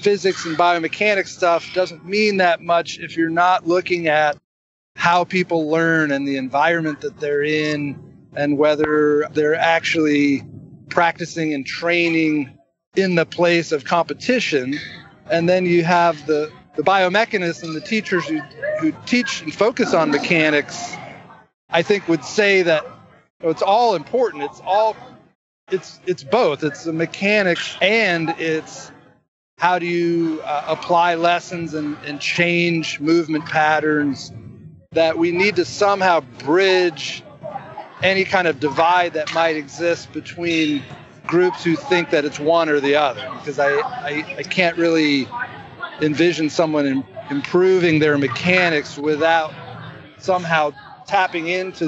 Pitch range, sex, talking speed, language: 150-175 Hz, male, 140 wpm, English